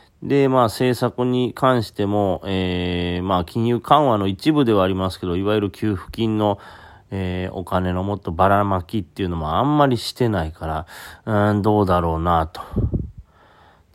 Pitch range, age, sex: 95-125 Hz, 30-49, male